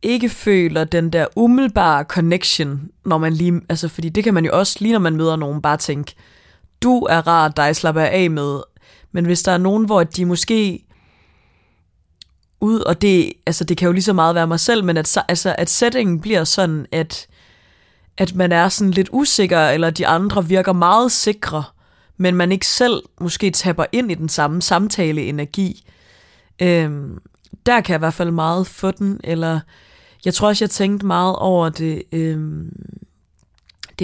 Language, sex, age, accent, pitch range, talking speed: Danish, female, 20-39, native, 160-195 Hz, 185 wpm